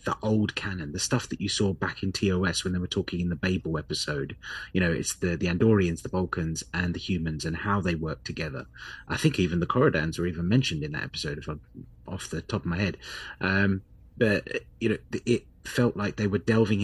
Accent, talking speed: British, 220 wpm